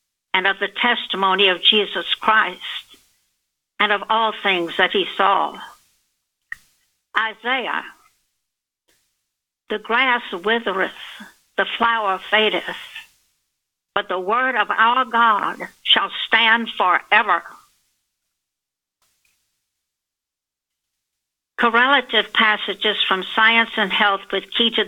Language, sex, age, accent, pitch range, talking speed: English, female, 60-79, American, 185-225 Hz, 95 wpm